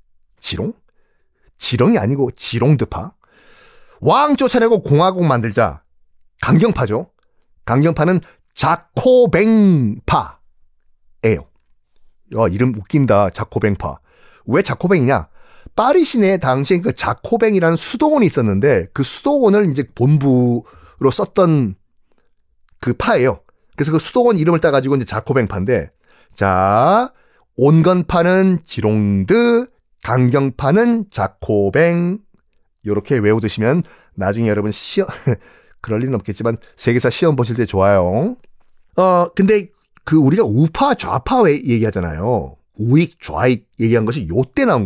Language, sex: Korean, male